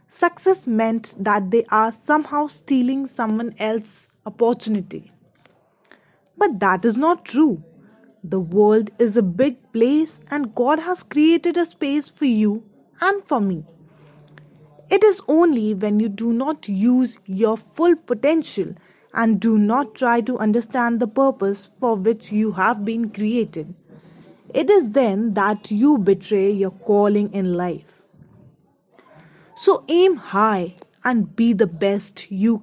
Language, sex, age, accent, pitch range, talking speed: English, female, 20-39, Indian, 200-275 Hz, 140 wpm